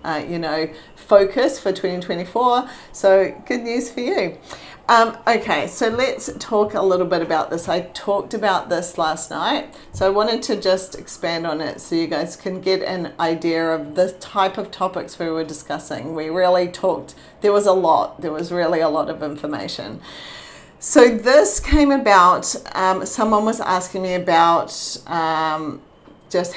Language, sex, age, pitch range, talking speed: English, female, 40-59, 170-200 Hz, 170 wpm